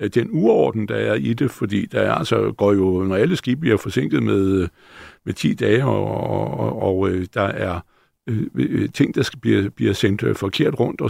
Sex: male